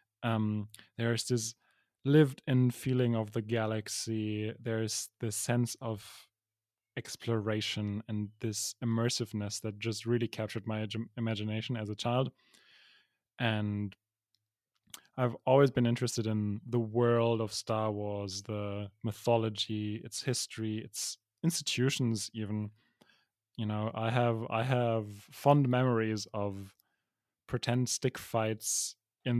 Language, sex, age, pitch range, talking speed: English, male, 20-39, 110-120 Hz, 120 wpm